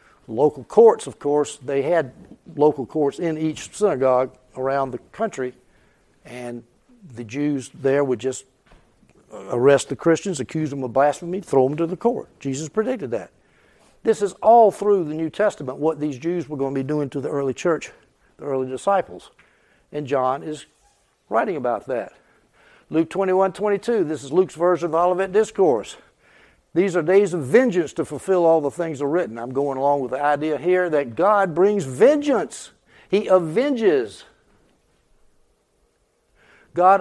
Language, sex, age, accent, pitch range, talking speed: English, male, 60-79, American, 140-190 Hz, 160 wpm